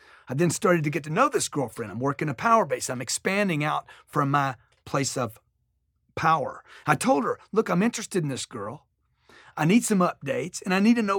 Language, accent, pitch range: English, American, 145-210 Hz